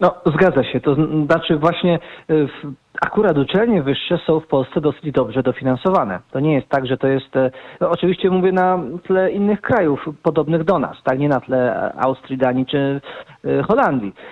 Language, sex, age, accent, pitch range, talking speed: Polish, male, 40-59, native, 130-175 Hz, 170 wpm